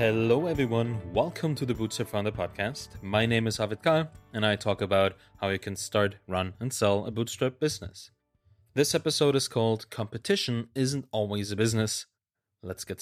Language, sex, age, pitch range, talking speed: English, male, 30-49, 100-130 Hz, 175 wpm